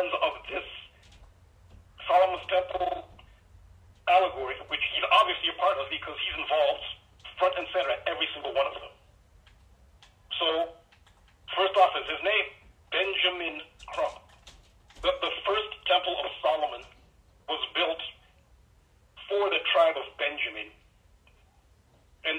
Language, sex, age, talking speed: English, male, 50-69, 120 wpm